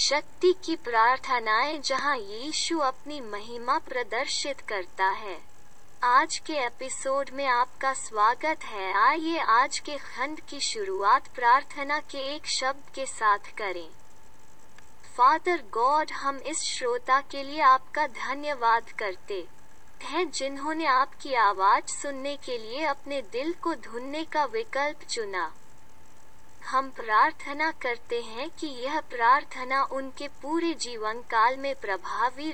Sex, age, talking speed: female, 20-39, 120 wpm